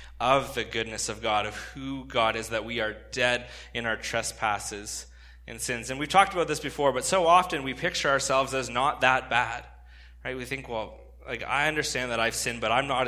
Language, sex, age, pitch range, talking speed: English, male, 20-39, 110-135 Hz, 215 wpm